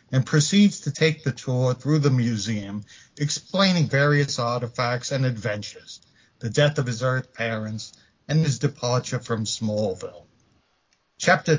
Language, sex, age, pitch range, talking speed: English, male, 60-79, 120-150 Hz, 135 wpm